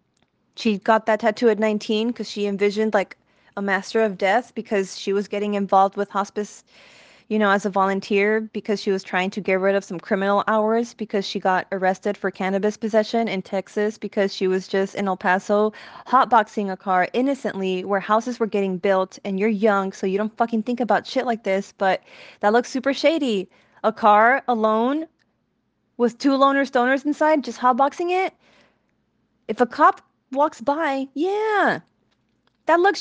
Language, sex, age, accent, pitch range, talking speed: English, female, 20-39, American, 195-245 Hz, 180 wpm